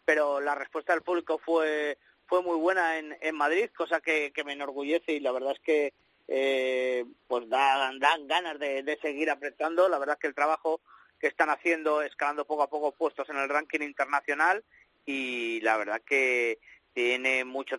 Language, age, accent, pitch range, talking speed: Spanish, 30-49, Spanish, 120-155 Hz, 185 wpm